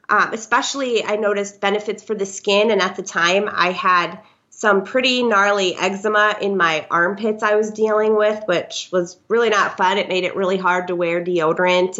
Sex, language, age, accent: female, English, 20-39, American